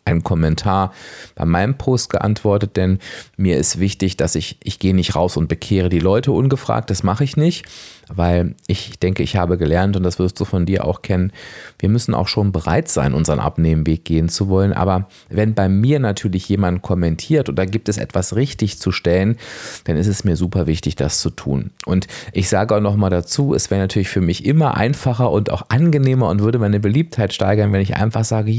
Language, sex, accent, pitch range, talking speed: German, male, German, 90-115 Hz, 210 wpm